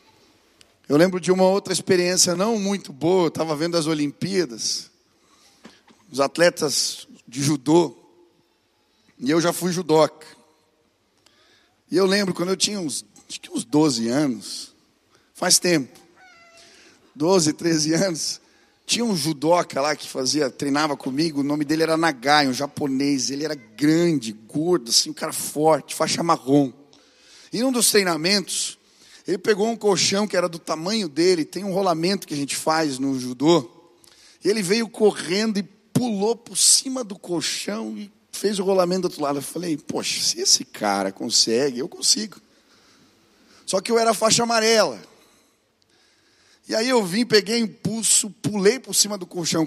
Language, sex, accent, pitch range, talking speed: English, male, Brazilian, 155-210 Hz, 155 wpm